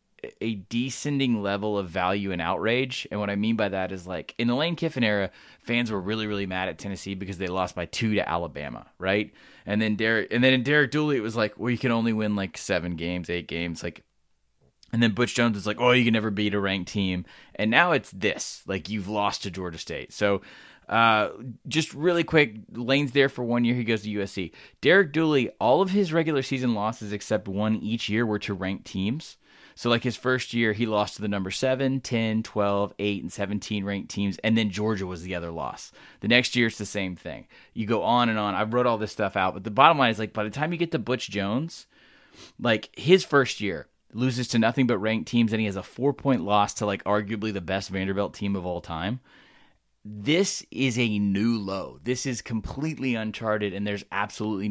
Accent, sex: American, male